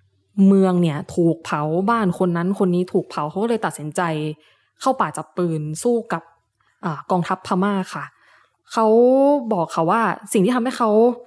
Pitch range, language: 175-230 Hz, Thai